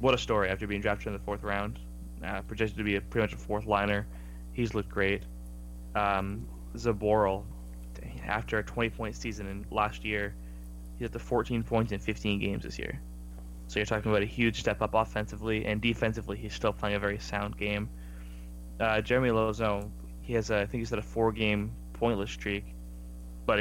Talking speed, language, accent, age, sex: 185 wpm, English, American, 10-29, male